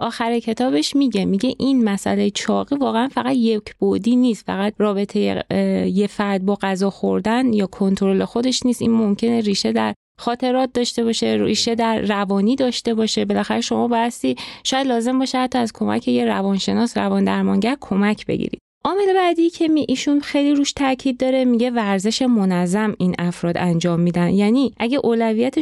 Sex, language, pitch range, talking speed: female, Persian, 210-265 Hz, 165 wpm